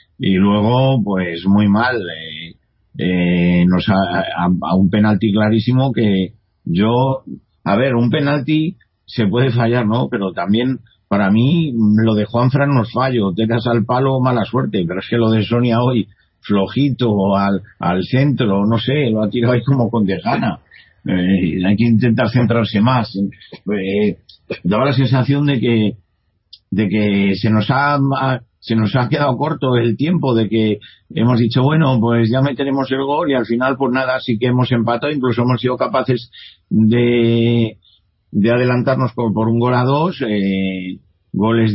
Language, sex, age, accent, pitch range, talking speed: Spanish, male, 50-69, Spanish, 100-130 Hz, 170 wpm